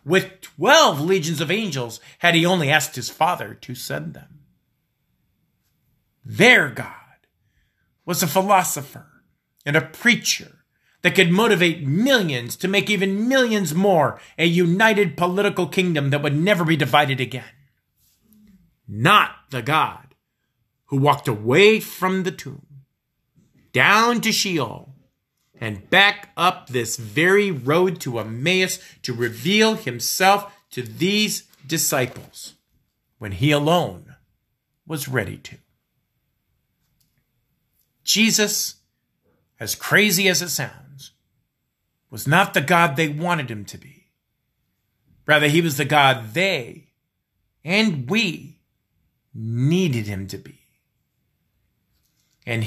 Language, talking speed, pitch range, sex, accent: English, 115 wpm, 130-190 Hz, male, American